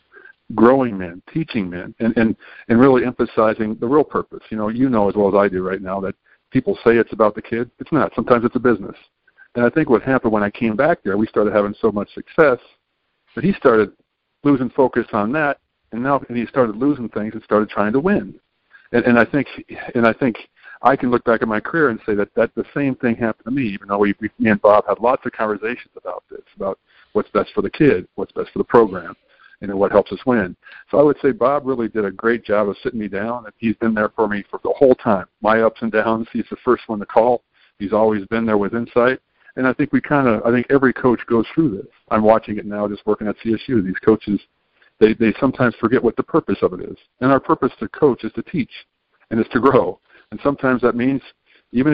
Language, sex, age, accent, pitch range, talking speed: English, male, 50-69, American, 105-130 Hz, 240 wpm